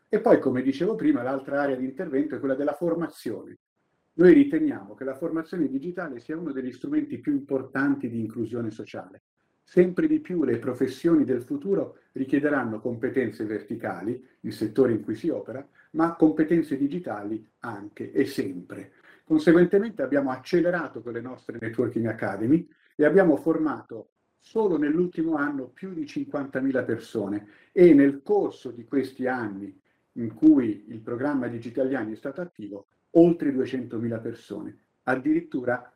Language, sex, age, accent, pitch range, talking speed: Italian, male, 50-69, native, 115-170 Hz, 145 wpm